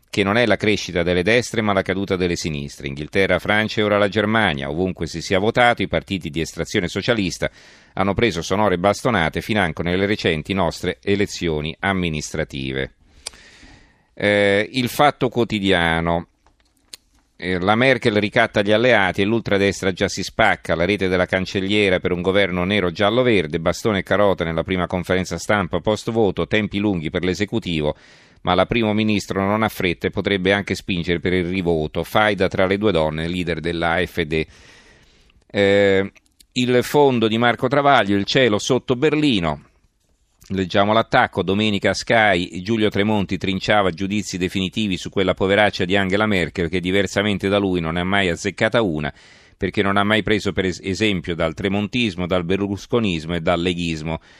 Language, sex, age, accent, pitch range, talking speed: Italian, male, 40-59, native, 90-105 Hz, 155 wpm